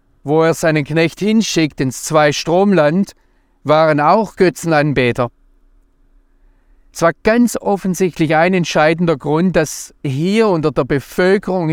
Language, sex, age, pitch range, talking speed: German, male, 40-59, 140-185 Hz, 115 wpm